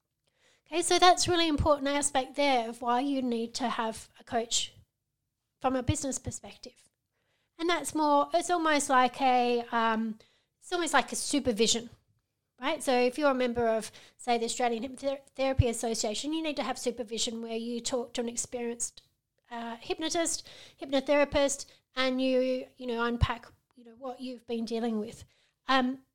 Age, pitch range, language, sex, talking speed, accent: 30-49, 240-285 Hz, English, female, 150 wpm, Australian